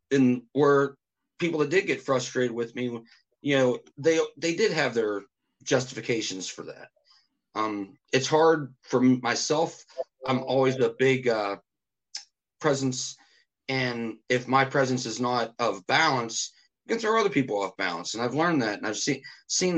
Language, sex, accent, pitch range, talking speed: English, male, American, 110-135 Hz, 160 wpm